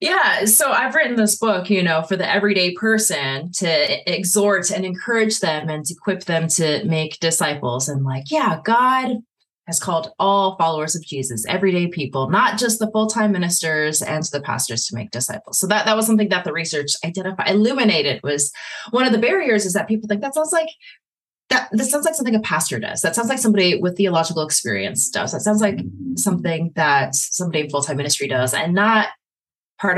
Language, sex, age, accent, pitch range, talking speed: English, female, 20-39, American, 155-215 Hz, 195 wpm